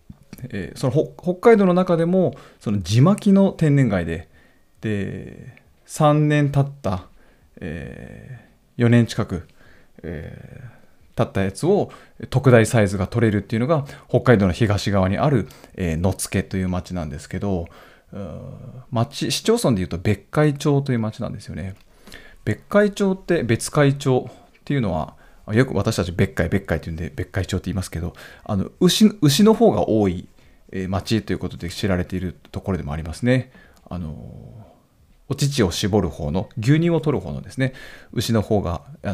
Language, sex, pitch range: Japanese, male, 90-135 Hz